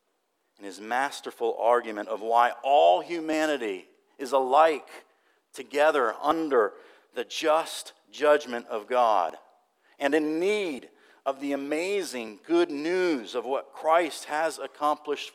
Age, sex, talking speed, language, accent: 50-69, male, 115 wpm, English, American